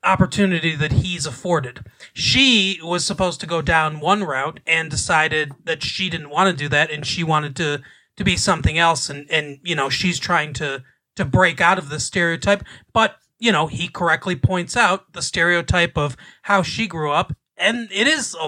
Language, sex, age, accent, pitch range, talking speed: English, male, 30-49, American, 155-195 Hz, 195 wpm